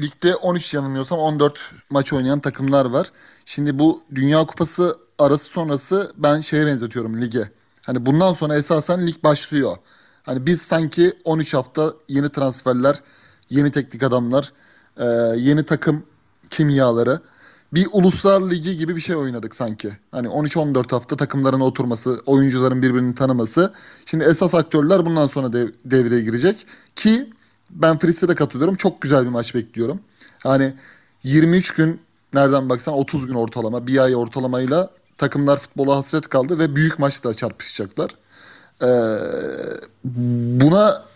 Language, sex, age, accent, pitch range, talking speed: Turkish, male, 30-49, native, 130-175 Hz, 135 wpm